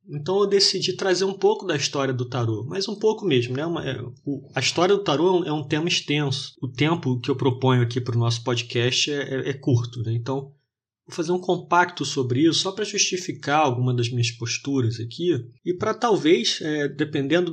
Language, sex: Portuguese, male